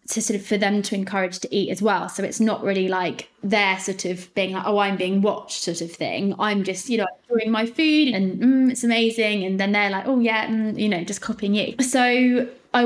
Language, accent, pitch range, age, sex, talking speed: English, British, 195-230 Hz, 20-39, female, 245 wpm